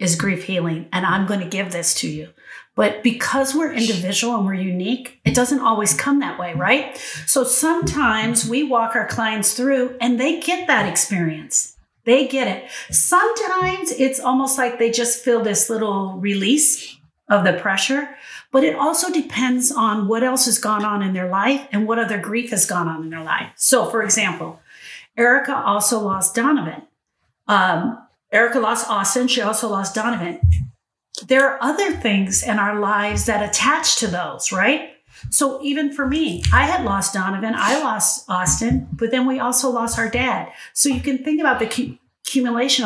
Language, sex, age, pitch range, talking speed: English, female, 50-69, 205-270 Hz, 175 wpm